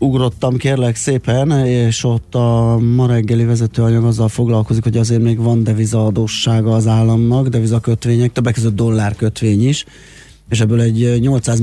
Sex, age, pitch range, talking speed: male, 30-49, 100-115 Hz, 140 wpm